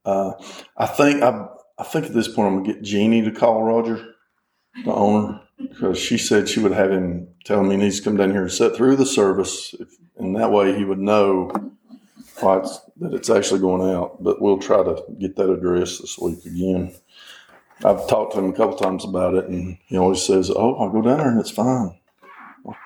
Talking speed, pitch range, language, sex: 220 wpm, 90-110 Hz, English, male